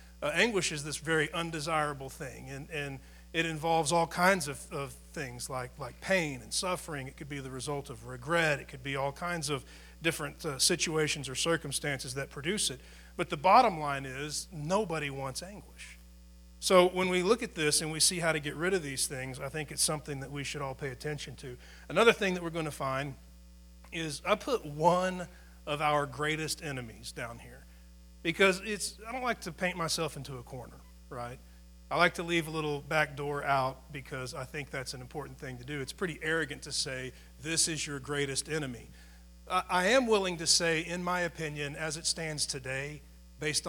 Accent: American